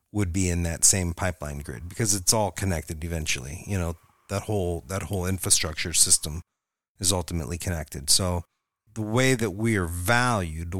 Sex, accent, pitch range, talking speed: male, American, 90-110 Hz, 170 wpm